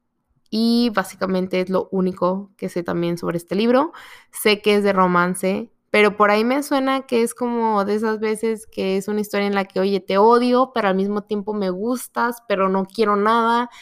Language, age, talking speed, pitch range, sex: Spanish, 20-39, 205 wpm, 185-220 Hz, female